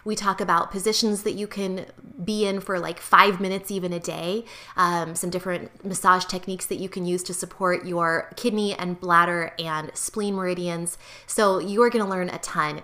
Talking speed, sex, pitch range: 195 wpm, female, 180-220 Hz